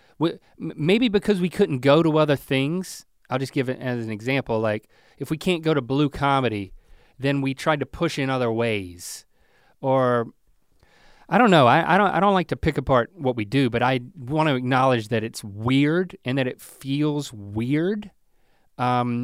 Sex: male